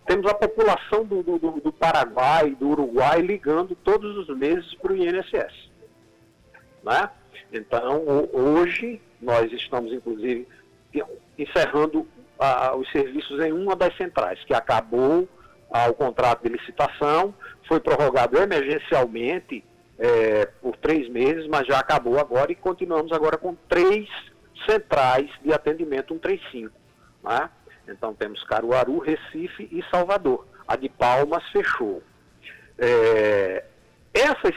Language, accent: Portuguese, Brazilian